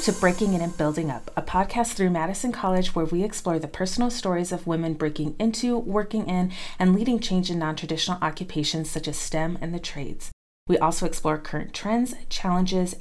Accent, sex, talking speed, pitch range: American, female, 190 wpm, 160-195 Hz